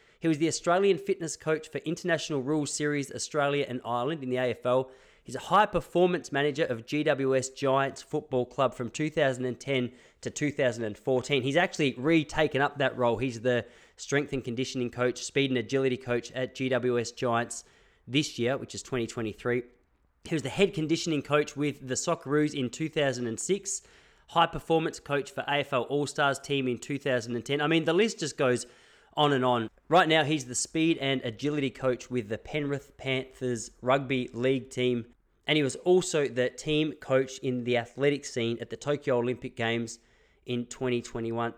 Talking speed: 165 wpm